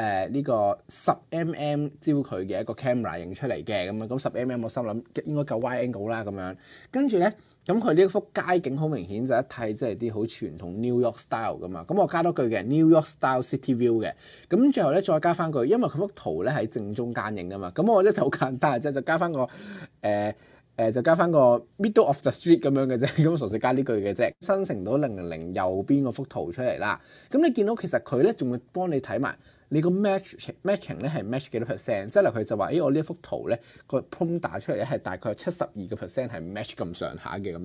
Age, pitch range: 20-39, 120-155 Hz